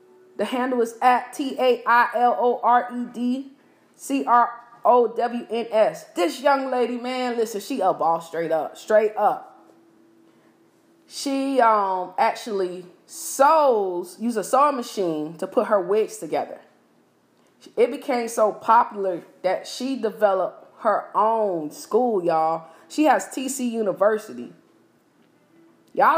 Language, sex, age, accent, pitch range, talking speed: English, female, 20-39, American, 220-270 Hz, 120 wpm